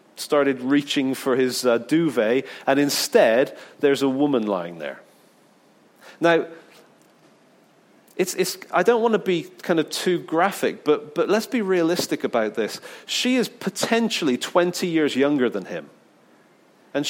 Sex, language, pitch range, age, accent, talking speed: male, English, 135-190 Hz, 40-59, British, 145 wpm